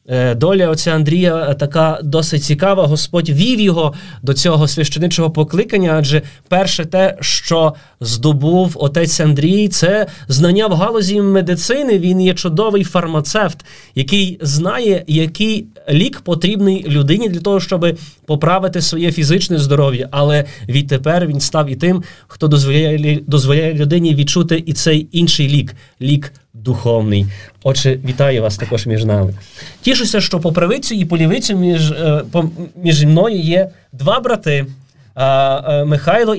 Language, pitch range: Ukrainian, 135-175 Hz